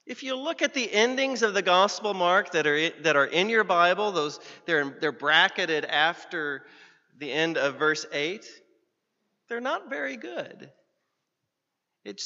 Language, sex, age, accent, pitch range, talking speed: English, male, 40-59, American, 160-215 Hz, 160 wpm